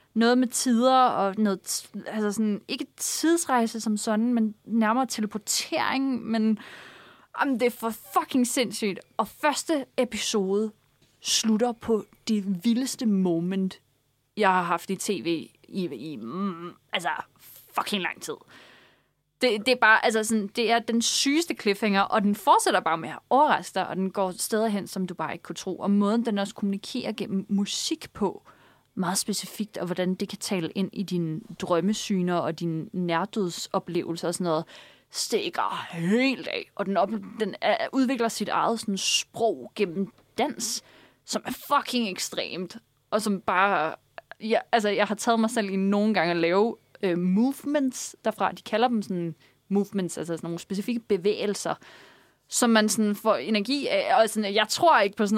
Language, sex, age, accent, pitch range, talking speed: Danish, female, 30-49, native, 190-235 Hz, 165 wpm